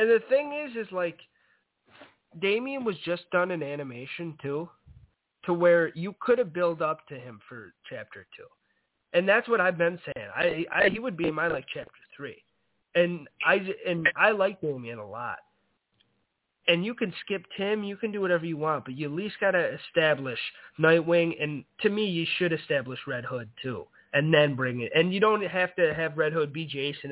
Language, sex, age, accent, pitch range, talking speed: English, male, 20-39, American, 140-175 Hz, 200 wpm